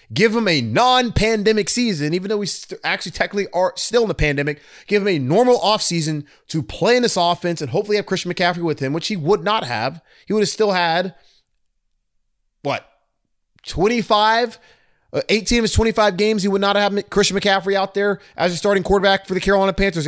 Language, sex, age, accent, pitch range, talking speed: English, male, 30-49, American, 165-220 Hz, 195 wpm